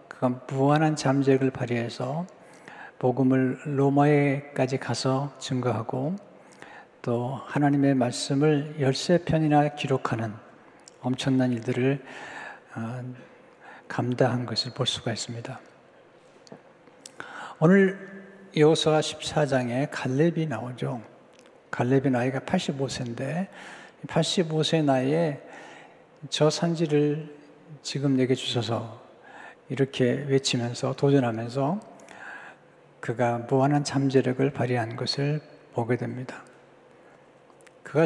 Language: Korean